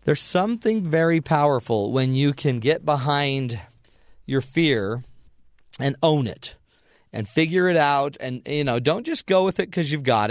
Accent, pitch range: American, 120-145 Hz